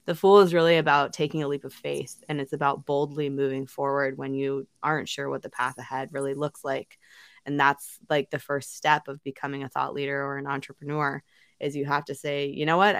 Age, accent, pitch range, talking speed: 20-39, American, 140-150 Hz, 225 wpm